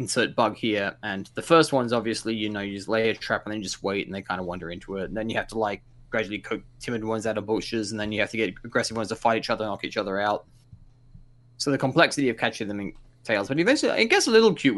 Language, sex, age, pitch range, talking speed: English, male, 20-39, 110-140 Hz, 290 wpm